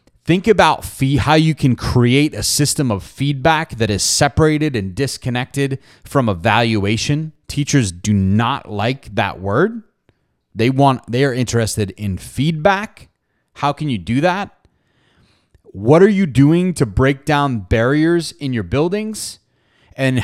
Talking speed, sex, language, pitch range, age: 135 wpm, male, English, 110-150 Hz, 30-49